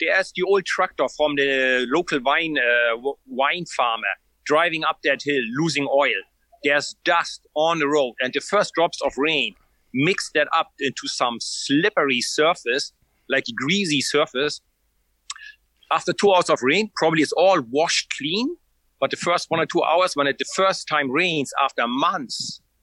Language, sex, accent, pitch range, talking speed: English, male, German, 140-205 Hz, 170 wpm